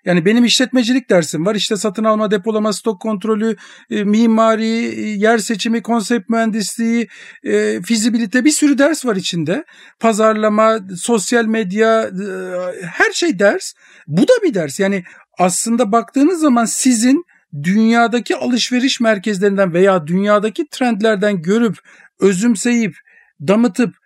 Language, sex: Turkish, male